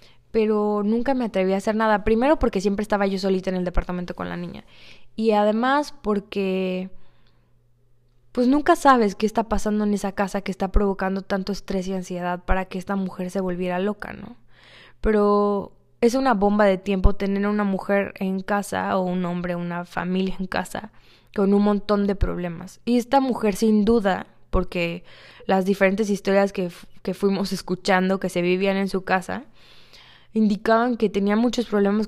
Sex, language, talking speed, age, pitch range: female, Spanish, 175 wpm, 20-39, 185-215 Hz